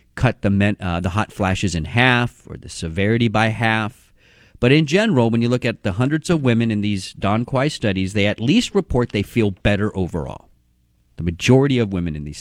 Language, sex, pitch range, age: English, male, 85-110 Hz, 50-69